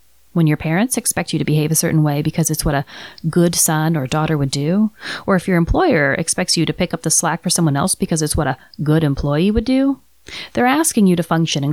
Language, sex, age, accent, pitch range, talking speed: English, female, 30-49, American, 155-210 Hz, 245 wpm